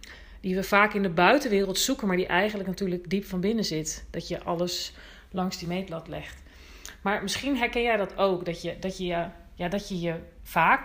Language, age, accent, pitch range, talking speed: Dutch, 40-59, Dutch, 170-200 Hz, 190 wpm